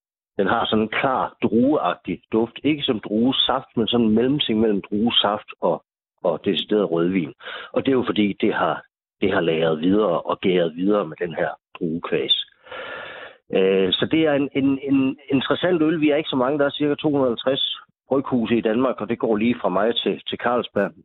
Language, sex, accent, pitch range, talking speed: Danish, male, native, 100-130 Hz, 200 wpm